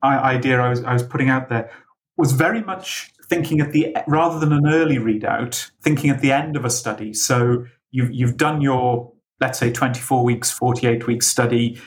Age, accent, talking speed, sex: 40-59, British, 190 wpm, male